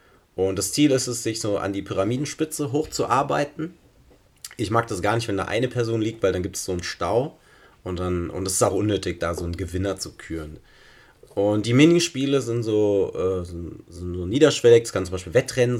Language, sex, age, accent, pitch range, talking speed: German, male, 30-49, German, 95-125 Hz, 205 wpm